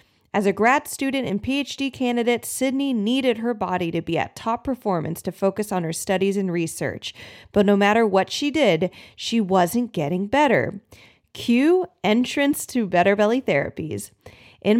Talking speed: 160 wpm